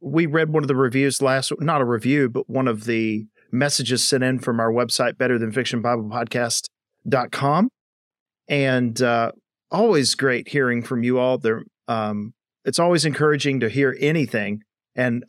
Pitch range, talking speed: 120-140 Hz, 145 wpm